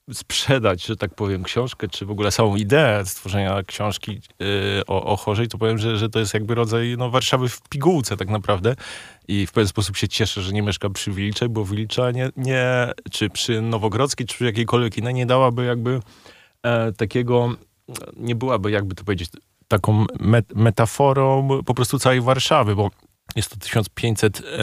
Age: 20-39